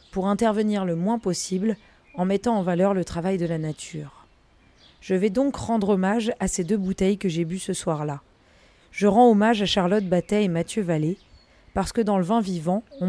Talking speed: 200 wpm